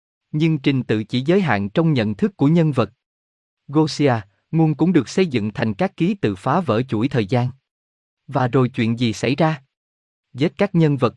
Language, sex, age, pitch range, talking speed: Vietnamese, male, 20-39, 110-160 Hz, 200 wpm